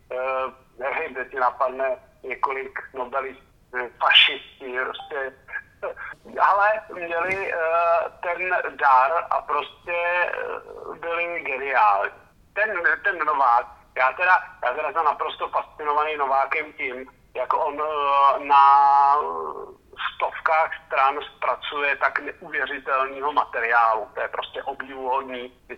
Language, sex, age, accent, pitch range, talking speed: Czech, male, 50-69, native, 130-170 Hz, 110 wpm